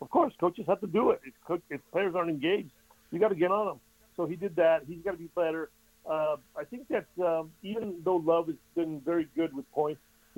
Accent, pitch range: American, 145-180 Hz